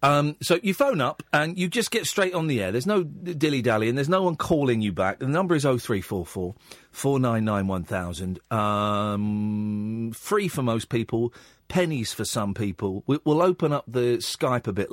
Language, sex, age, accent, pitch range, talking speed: English, male, 40-59, British, 110-175 Hz, 195 wpm